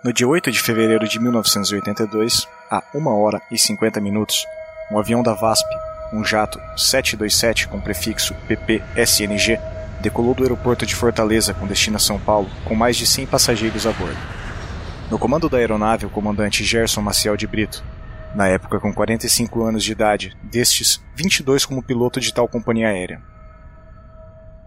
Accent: Brazilian